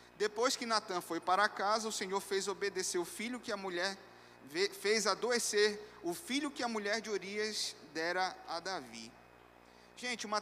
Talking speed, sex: 165 wpm, male